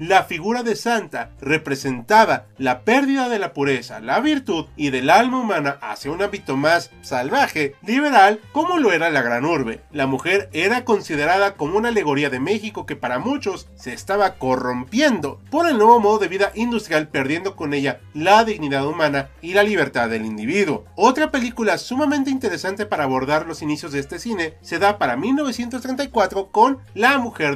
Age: 30-49